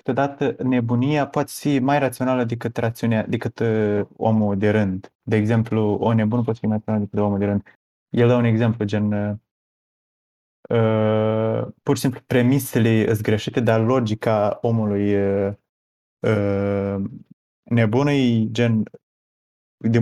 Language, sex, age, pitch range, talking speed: Romanian, male, 20-39, 105-125 Hz, 125 wpm